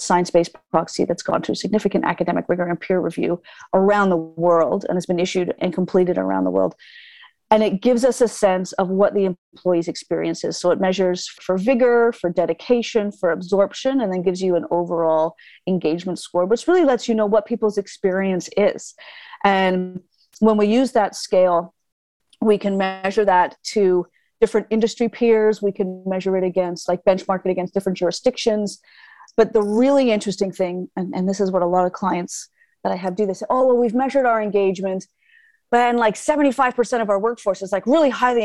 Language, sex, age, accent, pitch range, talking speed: English, female, 40-59, American, 185-240 Hz, 190 wpm